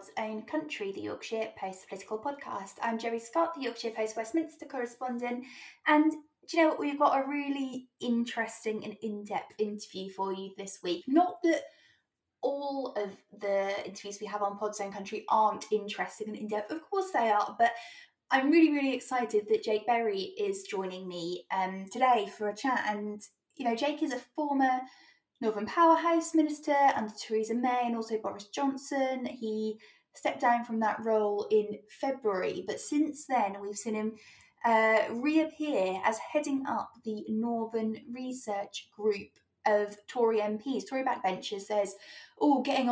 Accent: British